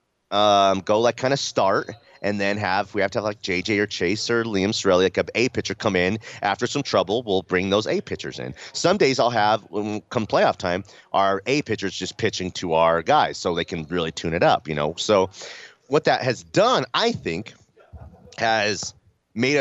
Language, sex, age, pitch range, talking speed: English, male, 30-49, 90-120 Hz, 205 wpm